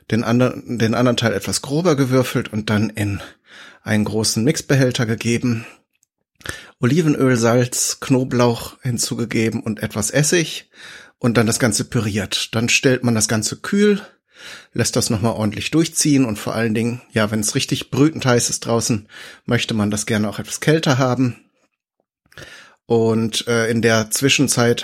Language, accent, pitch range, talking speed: German, German, 110-130 Hz, 150 wpm